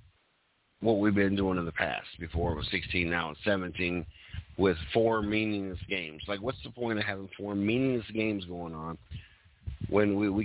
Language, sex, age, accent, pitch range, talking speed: English, male, 50-69, American, 90-115 Hz, 185 wpm